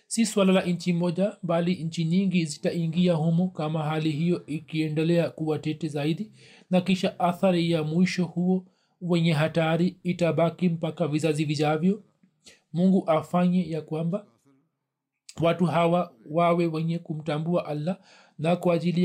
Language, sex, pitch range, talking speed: Swahili, male, 155-180 Hz, 130 wpm